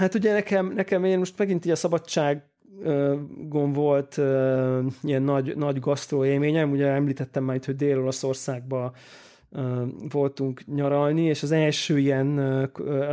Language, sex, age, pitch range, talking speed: Hungarian, male, 30-49, 130-150 Hz, 140 wpm